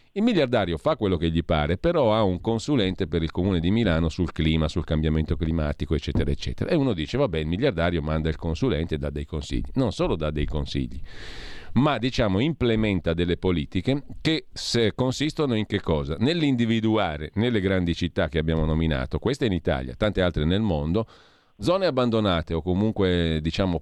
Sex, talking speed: male, 180 wpm